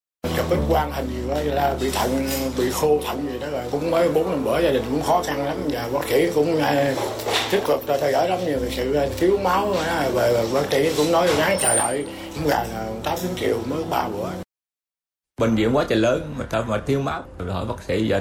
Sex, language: male, Vietnamese